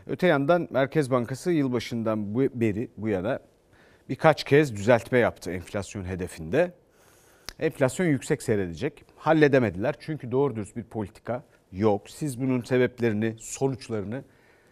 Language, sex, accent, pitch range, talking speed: Turkish, male, native, 110-150 Hz, 120 wpm